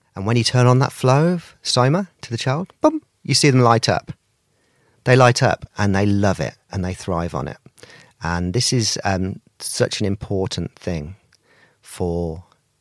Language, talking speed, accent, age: English, 185 wpm, British, 40-59